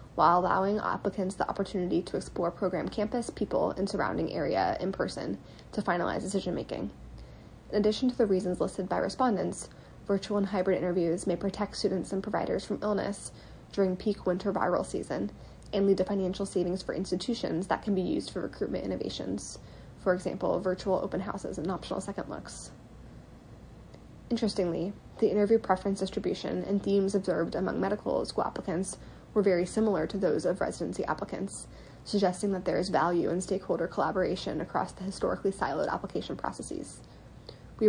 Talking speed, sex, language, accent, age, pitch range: 160 wpm, female, English, American, 10-29, 185-205 Hz